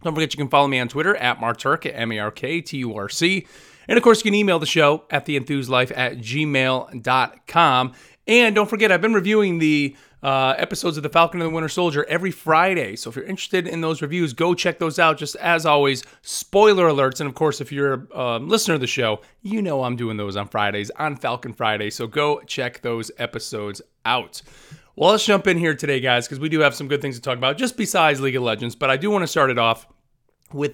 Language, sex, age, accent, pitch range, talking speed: English, male, 30-49, American, 120-160 Hz, 225 wpm